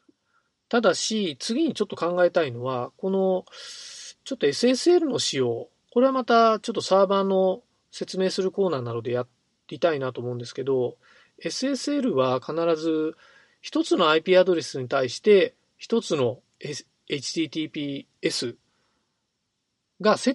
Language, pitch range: Japanese, 130-200 Hz